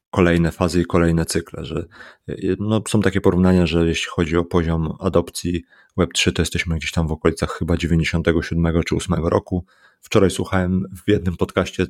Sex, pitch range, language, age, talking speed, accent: male, 85-95 Hz, Polish, 30-49, 165 wpm, native